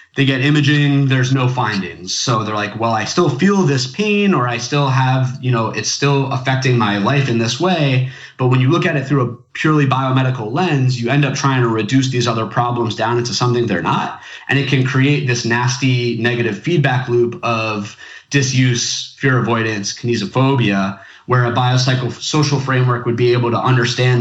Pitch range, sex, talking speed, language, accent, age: 115-140 Hz, male, 190 wpm, English, American, 30-49